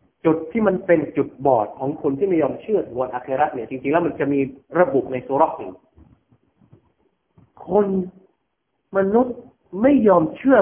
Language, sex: Thai, male